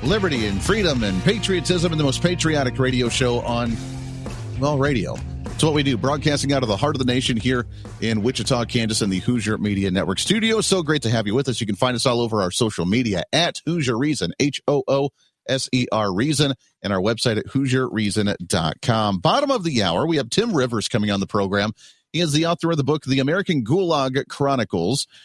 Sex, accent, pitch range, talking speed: male, American, 110-140 Hz, 200 wpm